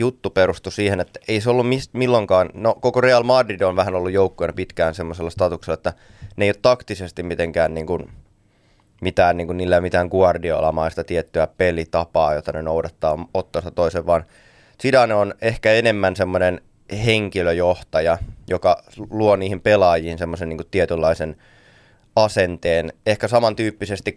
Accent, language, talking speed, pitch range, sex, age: native, Finnish, 145 wpm, 90-110 Hz, male, 20-39